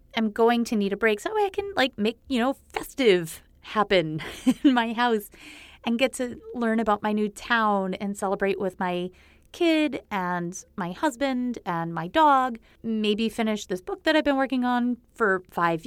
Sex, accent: female, American